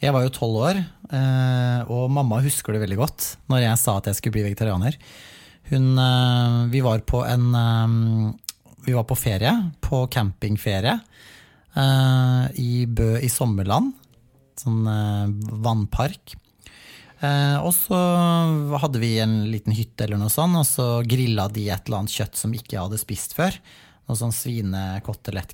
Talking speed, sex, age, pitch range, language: 145 wpm, male, 30-49, 110-135 Hz, English